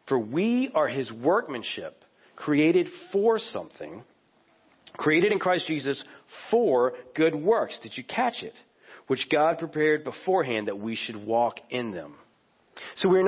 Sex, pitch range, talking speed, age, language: male, 130-180 Hz, 140 wpm, 40-59, English